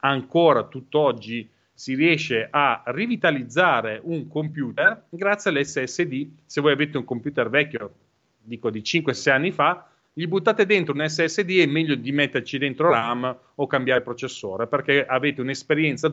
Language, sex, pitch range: Italian, male, 120-165 Hz